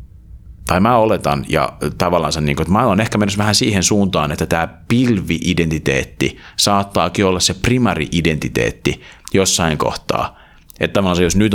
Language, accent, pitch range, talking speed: Finnish, native, 80-95 Hz, 140 wpm